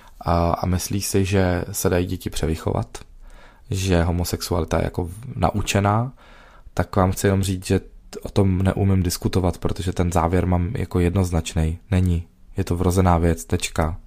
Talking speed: 150 wpm